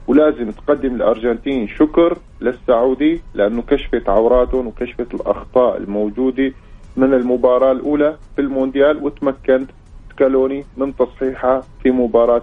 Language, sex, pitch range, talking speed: English, male, 120-140 Hz, 105 wpm